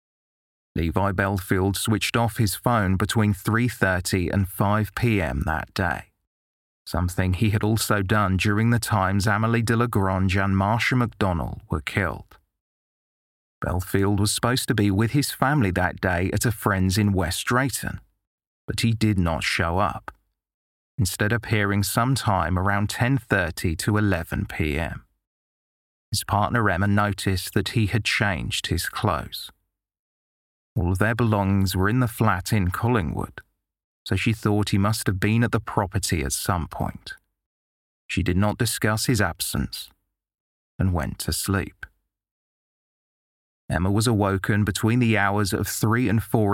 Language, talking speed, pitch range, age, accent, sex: English, 145 wpm, 95-110 Hz, 30-49, British, male